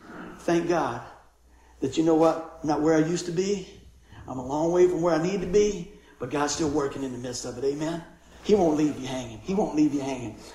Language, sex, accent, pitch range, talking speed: English, male, American, 130-175 Hz, 240 wpm